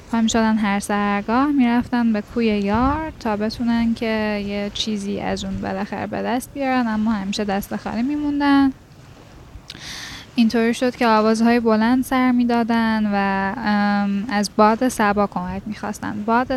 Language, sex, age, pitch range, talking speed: Persian, female, 10-29, 200-235 Hz, 150 wpm